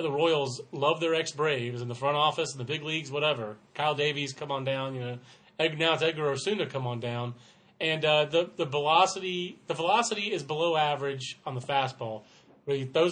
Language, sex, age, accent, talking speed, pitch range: English, male, 30-49, American, 200 wpm, 130-170 Hz